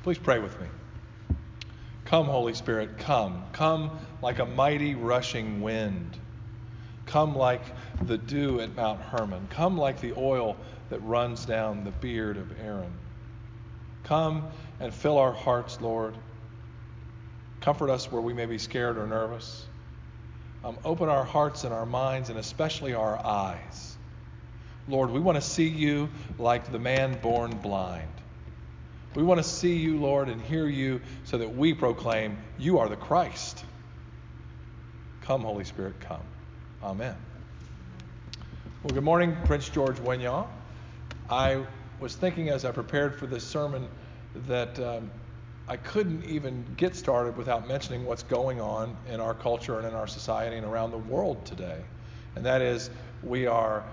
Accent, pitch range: American, 110-130 Hz